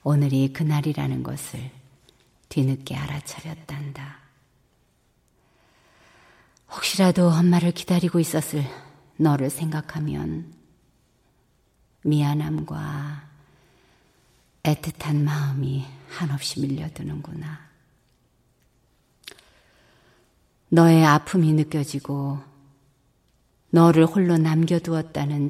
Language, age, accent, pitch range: Korean, 40-59, native, 135-160 Hz